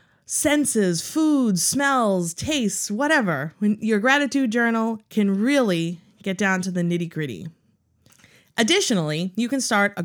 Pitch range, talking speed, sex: 175-255 Hz, 130 wpm, female